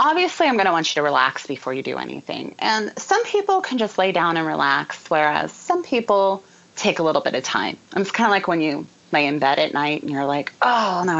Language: English